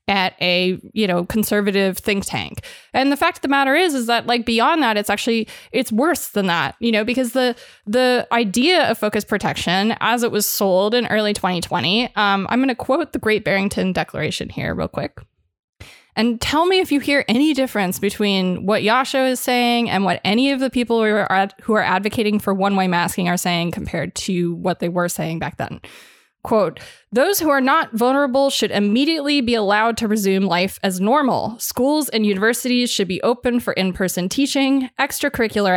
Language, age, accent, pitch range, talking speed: English, 20-39, American, 200-260 Hz, 195 wpm